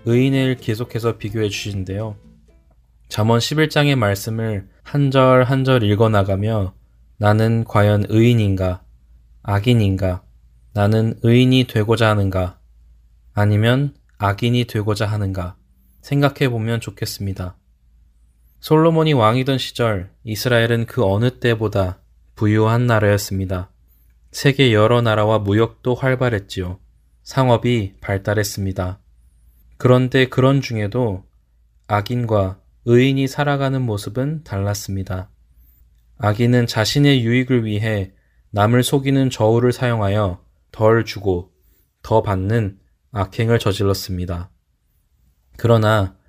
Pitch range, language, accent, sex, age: 90-120 Hz, Korean, native, male, 20-39